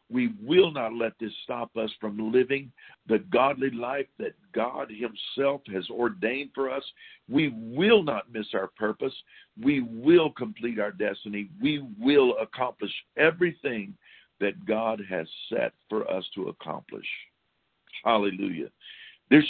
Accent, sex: American, male